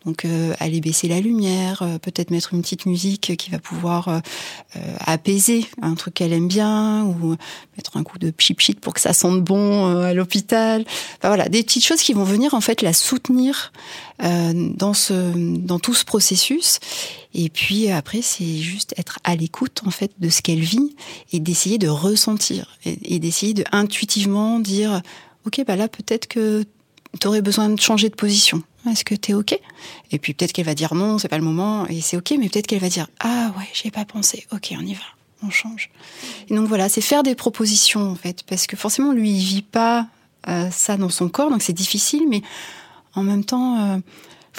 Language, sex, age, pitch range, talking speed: French, female, 30-49, 175-220 Hz, 205 wpm